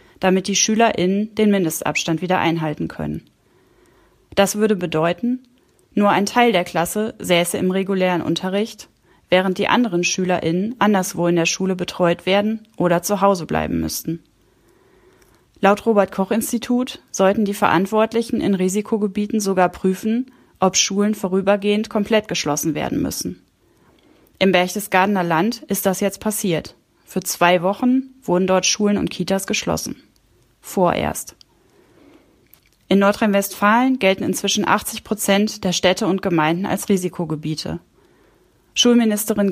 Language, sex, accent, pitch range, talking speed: German, female, German, 175-210 Hz, 125 wpm